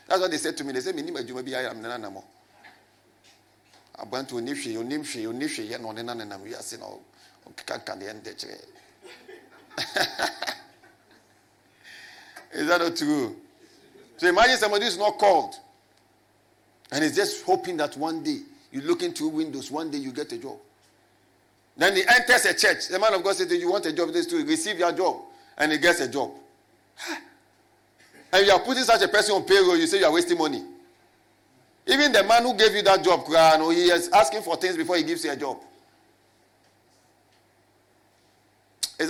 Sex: male